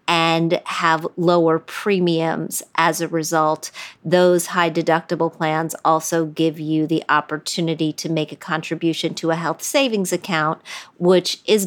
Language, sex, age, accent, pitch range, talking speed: English, female, 40-59, American, 155-175 Hz, 140 wpm